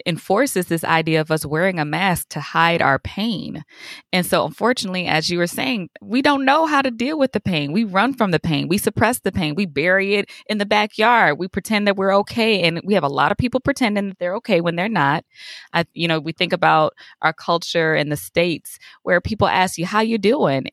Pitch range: 160-215 Hz